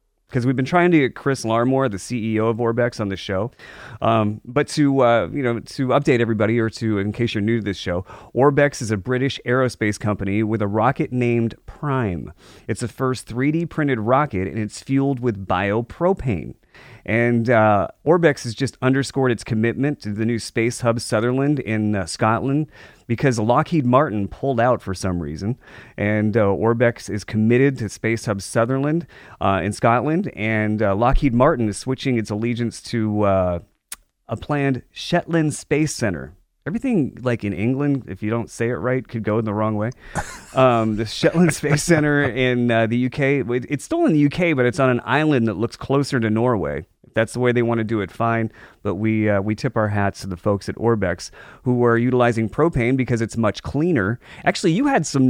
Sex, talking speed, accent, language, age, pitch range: male, 195 wpm, American, English, 30-49, 105-130 Hz